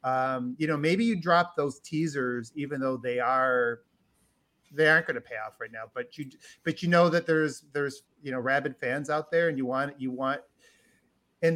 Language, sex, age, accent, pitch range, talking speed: English, male, 30-49, American, 125-165 Hz, 210 wpm